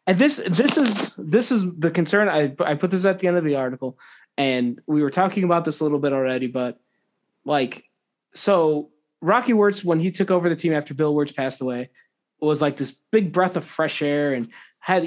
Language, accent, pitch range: English, American, 150-185 Hz